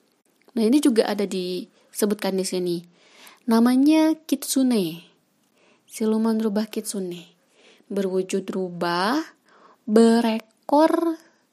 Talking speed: 80 wpm